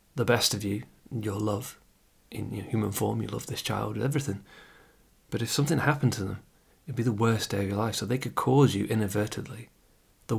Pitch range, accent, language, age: 105-140 Hz, British, English, 30-49